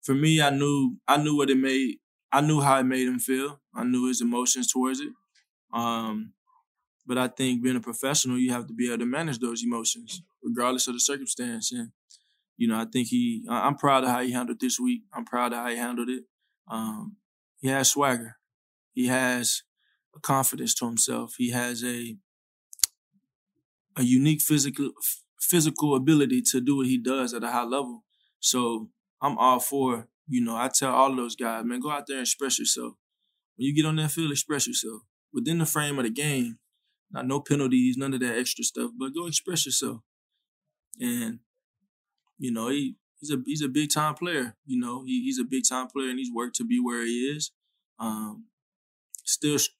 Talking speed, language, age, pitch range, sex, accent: 200 wpm, English, 20-39, 120-155 Hz, male, American